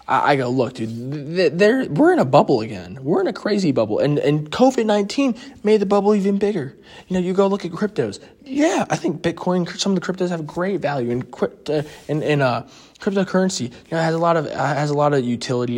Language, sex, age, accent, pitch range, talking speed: English, male, 20-39, American, 120-175 Hz, 225 wpm